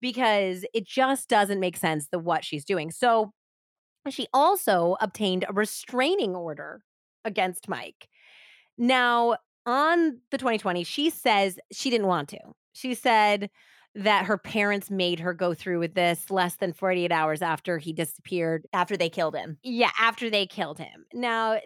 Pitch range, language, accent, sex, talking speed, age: 175-225 Hz, English, American, female, 160 wpm, 30-49